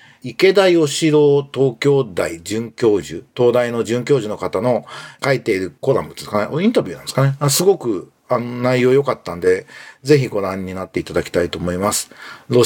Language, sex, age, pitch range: Japanese, male, 40-59, 115-155 Hz